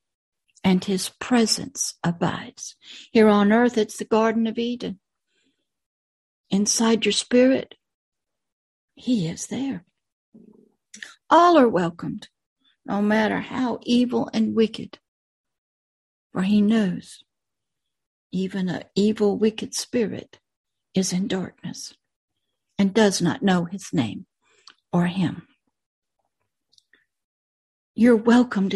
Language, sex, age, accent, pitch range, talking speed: English, female, 60-79, American, 195-240 Hz, 100 wpm